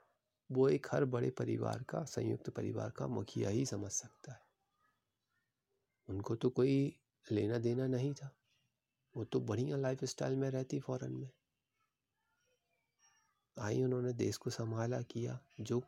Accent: native